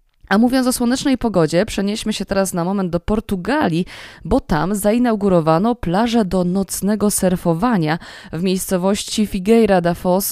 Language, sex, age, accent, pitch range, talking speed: Polish, female, 20-39, native, 180-215 Hz, 140 wpm